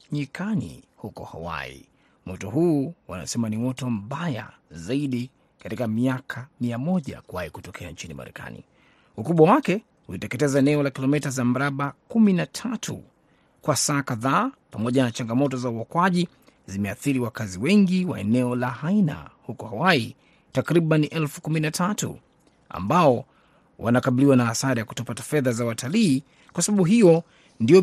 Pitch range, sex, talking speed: 130-175 Hz, male, 125 wpm